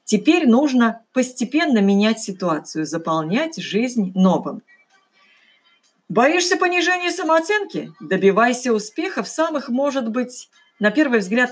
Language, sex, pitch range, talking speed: Russian, female, 190-280 Hz, 105 wpm